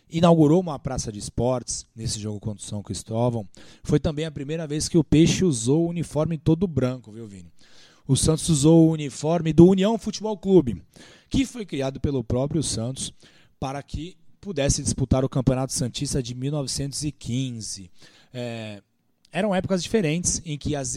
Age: 20-39